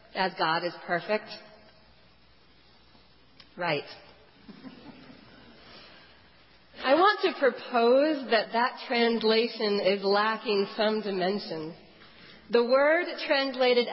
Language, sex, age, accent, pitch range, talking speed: English, female, 40-59, American, 195-265 Hz, 80 wpm